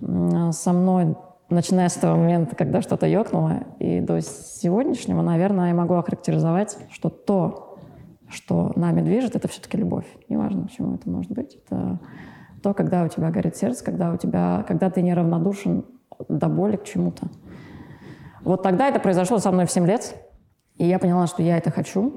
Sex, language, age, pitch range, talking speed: female, Russian, 20-39, 165-195 Hz, 170 wpm